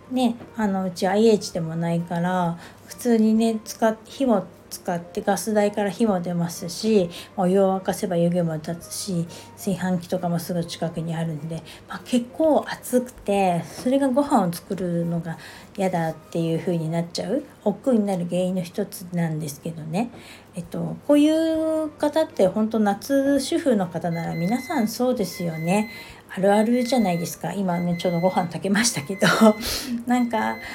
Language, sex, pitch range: Japanese, female, 175-230 Hz